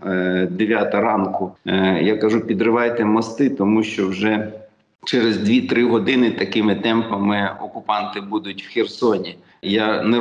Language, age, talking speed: Ukrainian, 50-69, 120 wpm